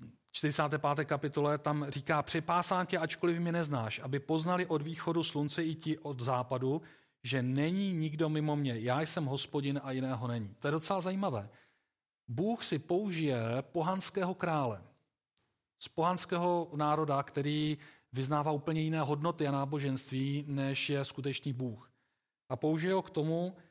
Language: Czech